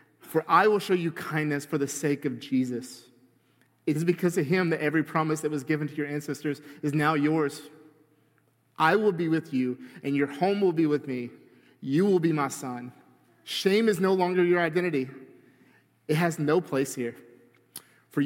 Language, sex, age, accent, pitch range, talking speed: English, male, 30-49, American, 125-165 Hz, 185 wpm